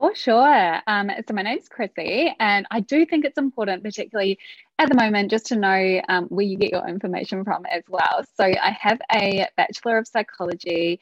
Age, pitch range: 20-39, 180-235 Hz